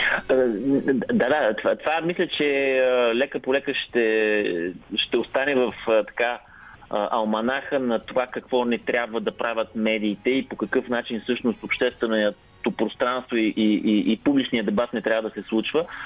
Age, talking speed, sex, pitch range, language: 30-49, 155 wpm, male, 110-150 Hz, Bulgarian